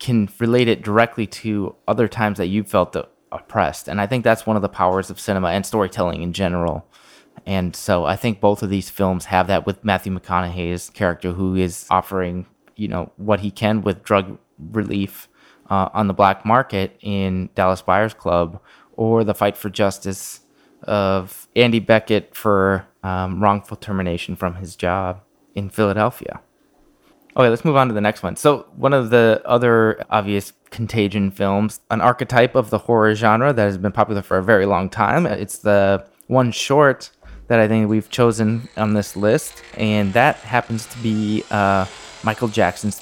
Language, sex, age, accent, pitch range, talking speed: English, male, 20-39, American, 95-110 Hz, 175 wpm